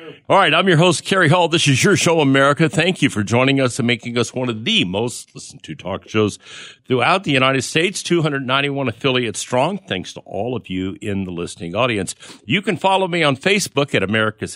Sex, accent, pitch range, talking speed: male, American, 100-135 Hz, 210 wpm